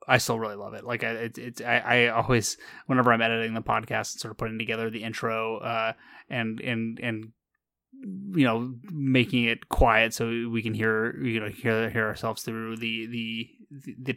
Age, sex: 20-39, male